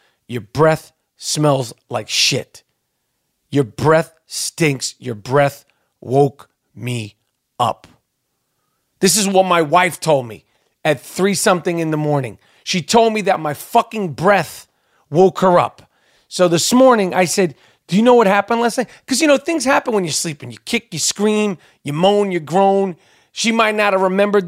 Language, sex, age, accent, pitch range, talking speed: English, male, 40-59, American, 155-205 Hz, 170 wpm